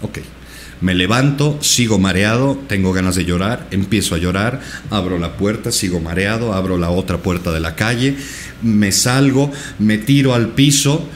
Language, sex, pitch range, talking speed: Spanish, male, 95-135 Hz, 160 wpm